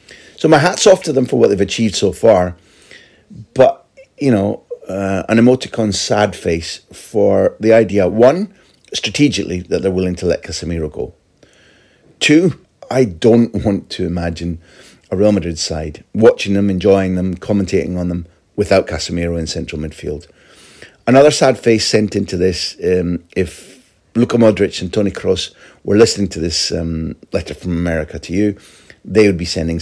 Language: English